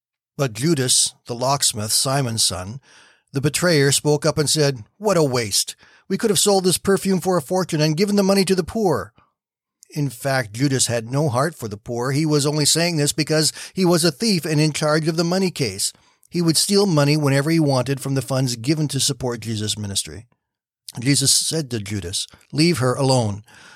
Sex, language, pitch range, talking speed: male, English, 120-155 Hz, 200 wpm